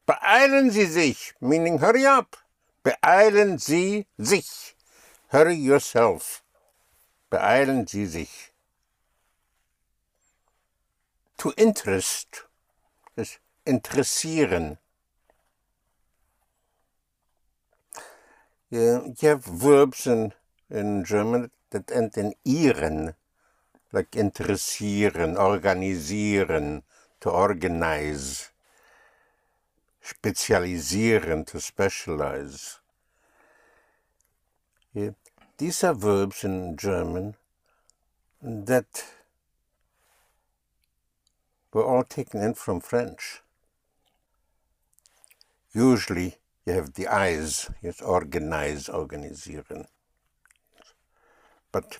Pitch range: 90-140 Hz